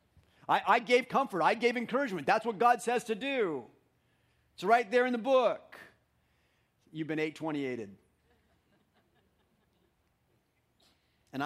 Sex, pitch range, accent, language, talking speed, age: male, 110-155 Hz, American, English, 115 wpm, 40-59